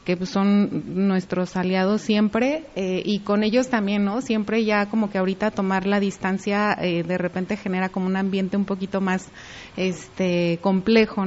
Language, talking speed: Spanish, 160 wpm